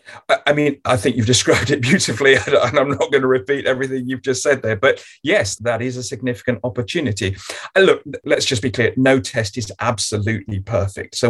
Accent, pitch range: British, 105-130 Hz